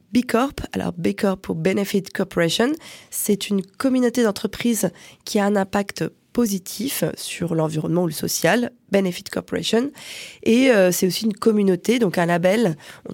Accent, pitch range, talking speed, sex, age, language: French, 190-240 Hz, 155 wpm, female, 20-39, French